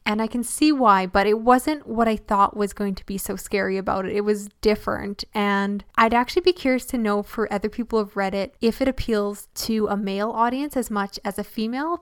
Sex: female